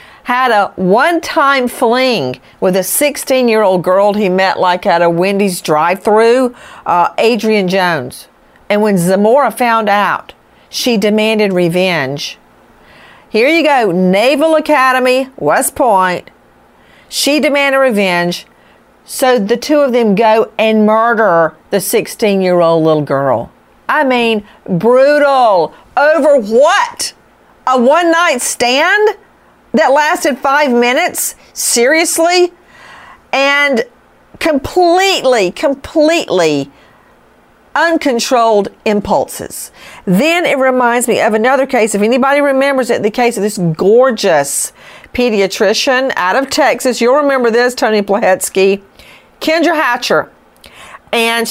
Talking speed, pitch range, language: 110 wpm, 195-275 Hz, English